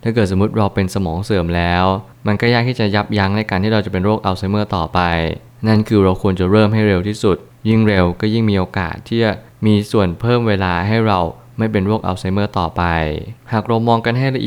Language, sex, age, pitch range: Thai, male, 20-39, 95-110 Hz